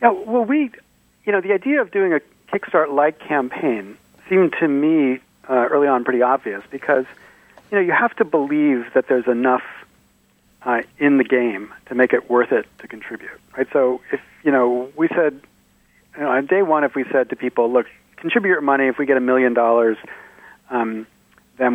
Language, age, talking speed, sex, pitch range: English, 40-59, 190 wpm, male, 125-170 Hz